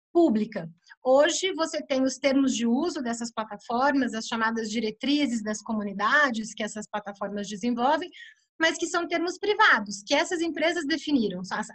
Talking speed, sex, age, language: 150 wpm, female, 30-49, Portuguese